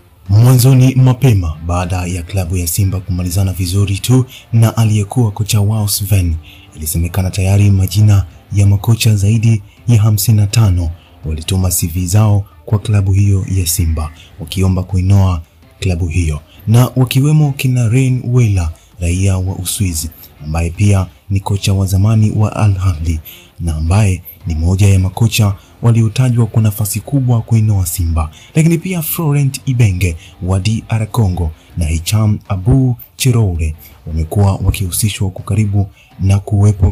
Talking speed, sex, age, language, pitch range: 130 wpm, male, 30-49, English, 90-110 Hz